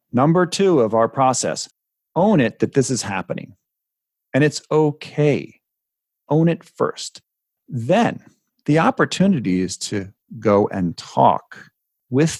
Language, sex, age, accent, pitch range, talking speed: English, male, 40-59, American, 115-150 Hz, 125 wpm